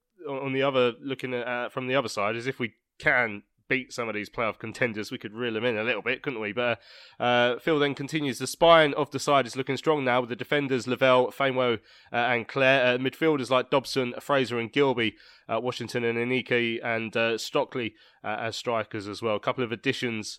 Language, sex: English, male